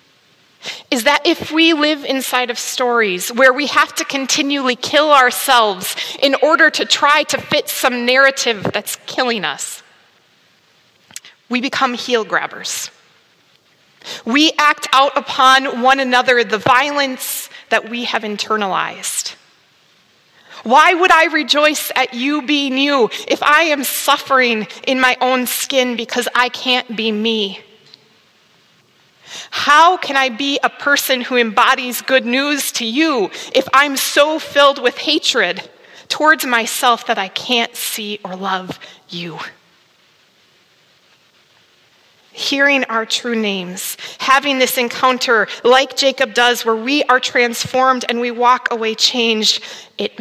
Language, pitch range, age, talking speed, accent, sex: English, 235-280 Hz, 30-49, 130 wpm, American, female